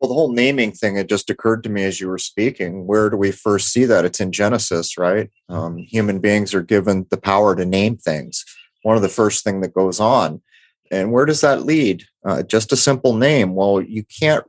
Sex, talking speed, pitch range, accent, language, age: male, 230 wpm, 95-115 Hz, American, English, 30-49